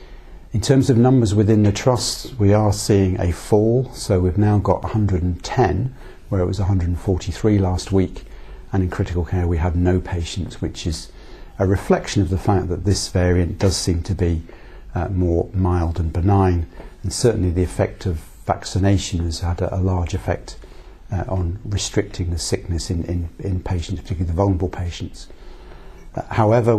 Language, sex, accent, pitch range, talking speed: English, male, British, 90-105 Hz, 170 wpm